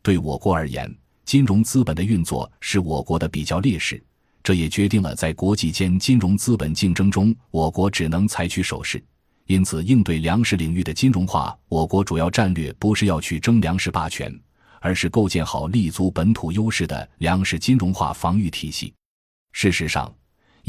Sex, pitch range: male, 80-105 Hz